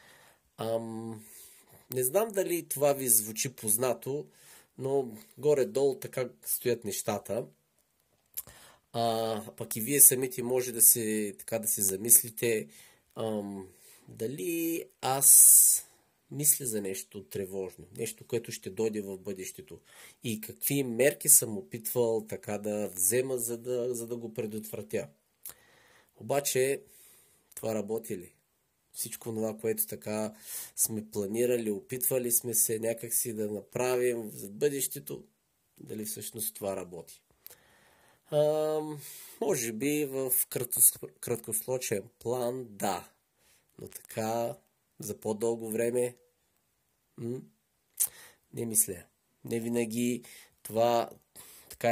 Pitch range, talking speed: 110-125 Hz, 105 wpm